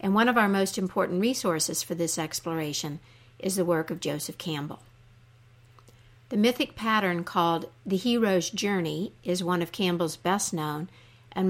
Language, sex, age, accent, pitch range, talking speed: English, female, 60-79, American, 140-195 Hz, 150 wpm